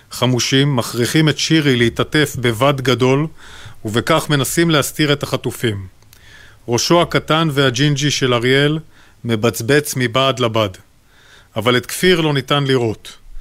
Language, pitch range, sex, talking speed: Hebrew, 115-145 Hz, male, 115 wpm